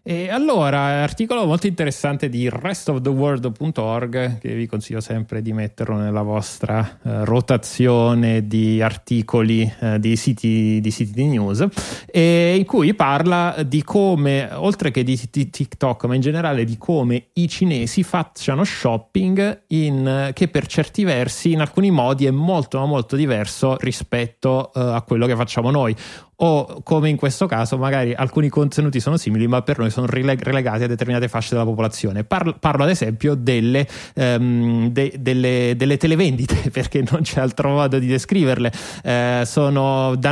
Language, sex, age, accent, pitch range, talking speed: Italian, male, 30-49, native, 120-150 Hz, 160 wpm